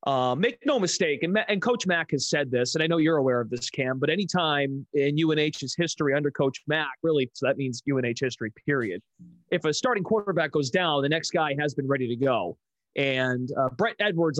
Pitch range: 140-180 Hz